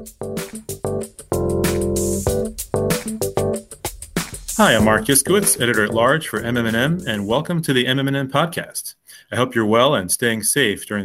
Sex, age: male, 30-49